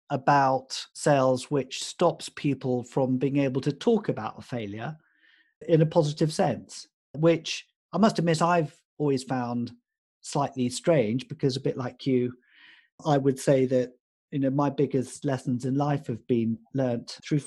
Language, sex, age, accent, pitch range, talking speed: English, male, 40-59, British, 125-160 Hz, 160 wpm